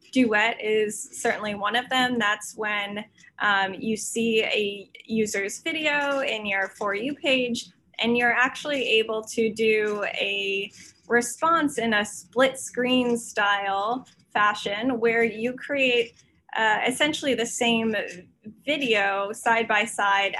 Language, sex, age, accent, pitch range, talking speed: English, female, 10-29, American, 205-240 Hz, 130 wpm